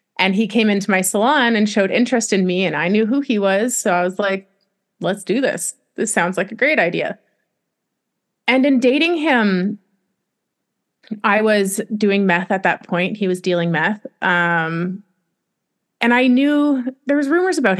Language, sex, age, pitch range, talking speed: English, female, 30-49, 190-245 Hz, 180 wpm